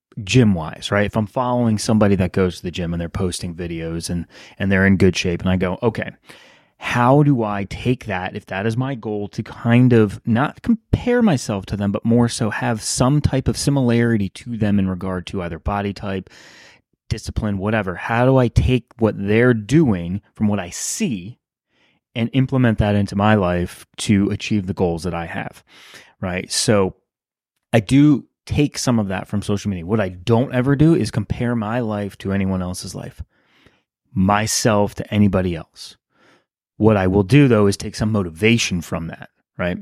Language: English